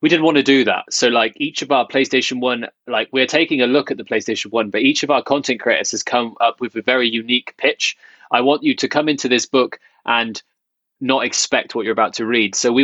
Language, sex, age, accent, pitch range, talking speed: English, male, 20-39, British, 110-130 Hz, 255 wpm